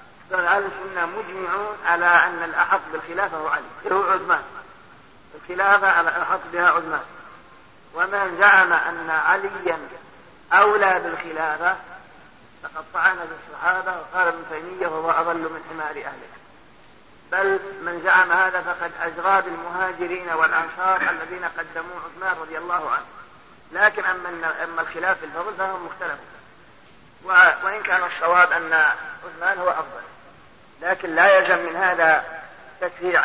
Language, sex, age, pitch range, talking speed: Arabic, male, 50-69, 170-190 Hz, 125 wpm